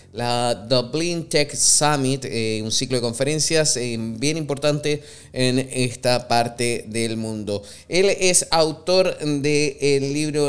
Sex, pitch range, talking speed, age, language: male, 130-165 Hz, 130 wpm, 20-39, Spanish